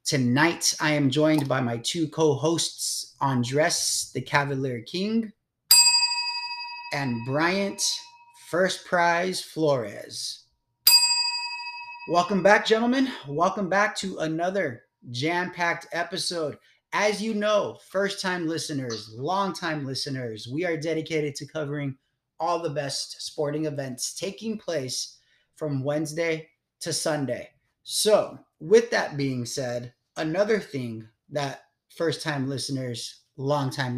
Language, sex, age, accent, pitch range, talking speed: English, male, 30-49, American, 140-185 Hz, 115 wpm